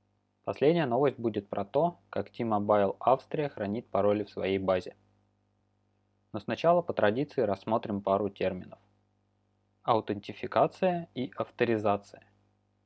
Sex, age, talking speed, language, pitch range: male, 20-39, 105 wpm, Russian, 100-115 Hz